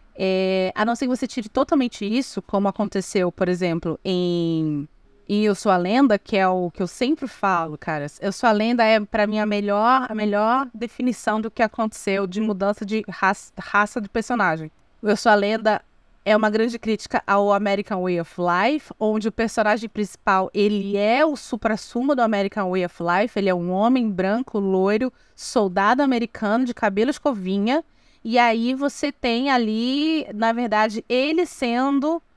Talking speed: 175 wpm